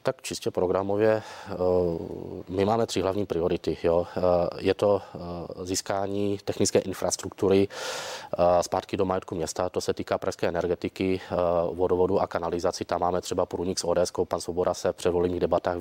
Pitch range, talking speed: 90-95 Hz, 140 wpm